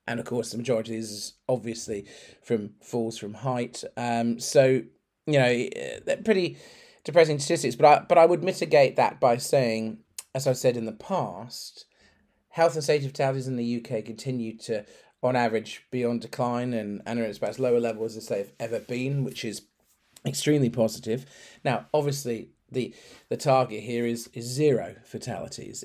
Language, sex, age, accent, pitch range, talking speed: English, male, 40-59, British, 115-140 Hz, 170 wpm